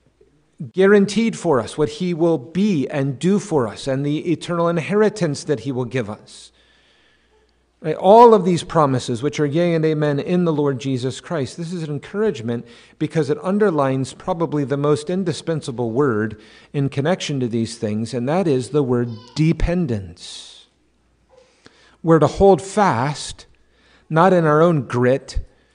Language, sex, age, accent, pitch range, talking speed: English, male, 50-69, American, 125-170 Hz, 155 wpm